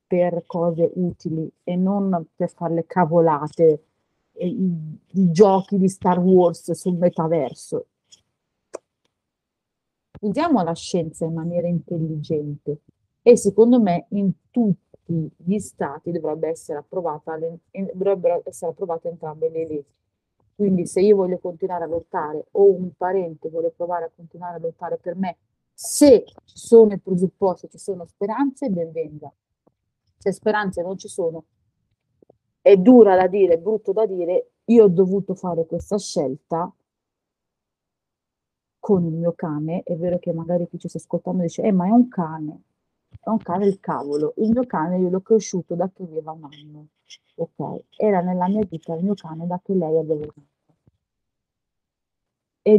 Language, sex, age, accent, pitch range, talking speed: Italian, female, 40-59, native, 160-195 Hz, 150 wpm